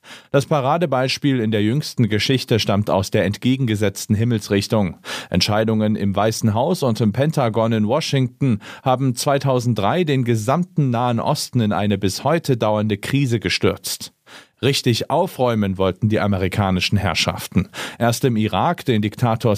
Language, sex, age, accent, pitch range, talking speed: German, male, 40-59, German, 105-135 Hz, 135 wpm